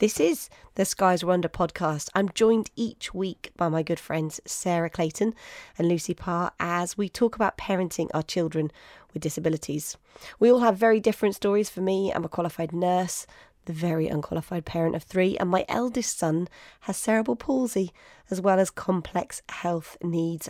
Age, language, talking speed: 20-39, English, 175 wpm